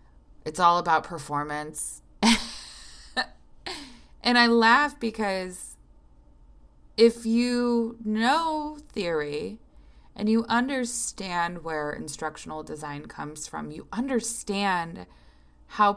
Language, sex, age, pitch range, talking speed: English, female, 20-39, 145-215 Hz, 85 wpm